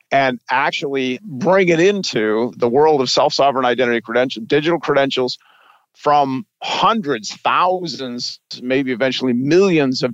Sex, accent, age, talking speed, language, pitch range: male, American, 50-69, 120 wpm, English, 125-150 Hz